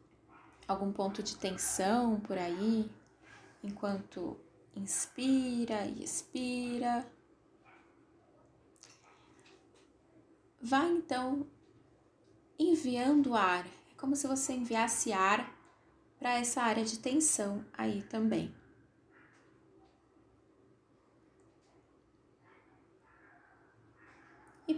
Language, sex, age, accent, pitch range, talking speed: Portuguese, female, 10-29, Brazilian, 205-275 Hz, 70 wpm